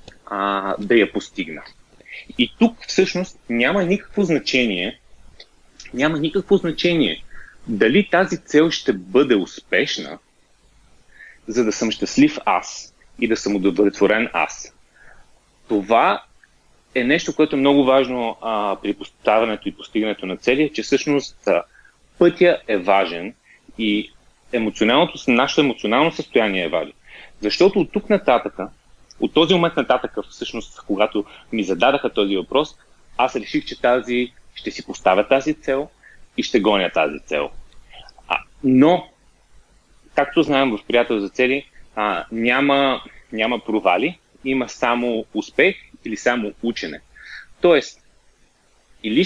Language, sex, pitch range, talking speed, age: Bulgarian, male, 115-175 Hz, 125 wpm, 30-49